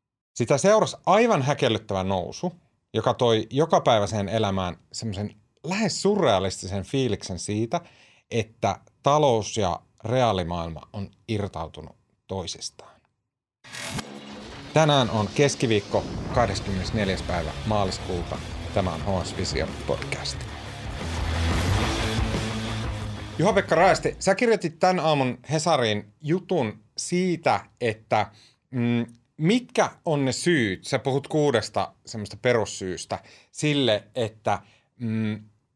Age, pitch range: 30-49, 100-145 Hz